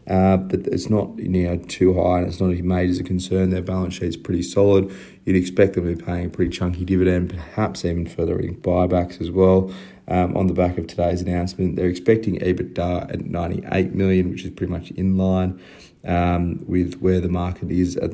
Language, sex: English, male